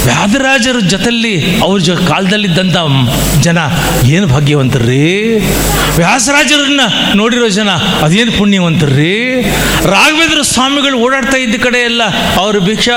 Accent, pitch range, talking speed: native, 140-210 Hz, 95 wpm